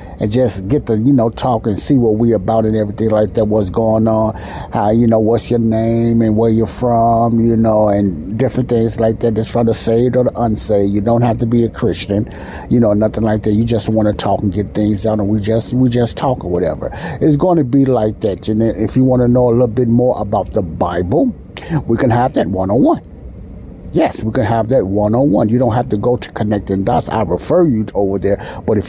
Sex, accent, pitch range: male, American, 105-125 Hz